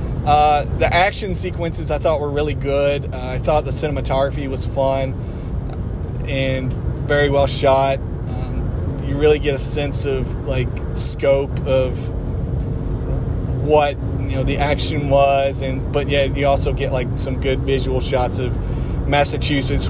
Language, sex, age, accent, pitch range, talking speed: English, male, 30-49, American, 125-140 Hz, 150 wpm